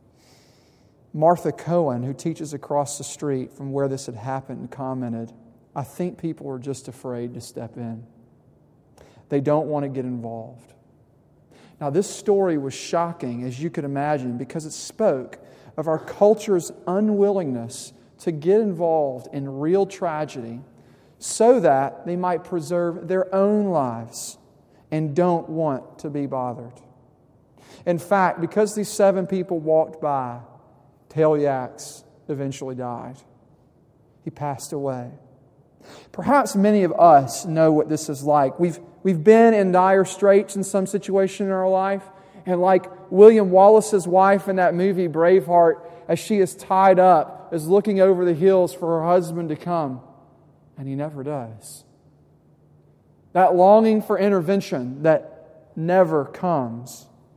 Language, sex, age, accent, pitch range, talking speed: English, male, 40-59, American, 135-190 Hz, 140 wpm